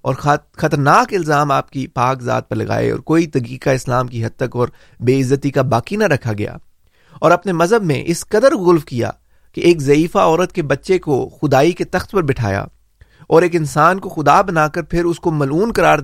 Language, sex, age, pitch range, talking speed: Urdu, male, 30-49, 125-170 Hz, 215 wpm